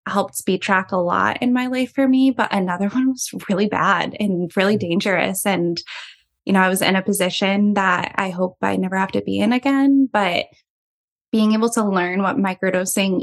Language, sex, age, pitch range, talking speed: English, female, 10-29, 185-210 Hz, 200 wpm